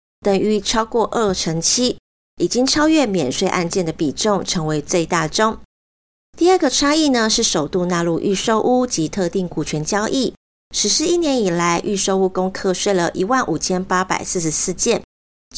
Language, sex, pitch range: Chinese, female, 175-240 Hz